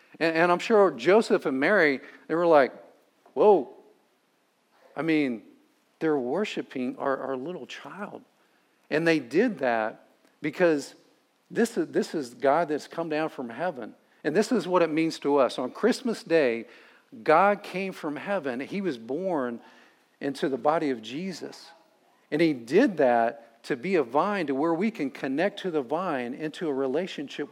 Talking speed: 165 wpm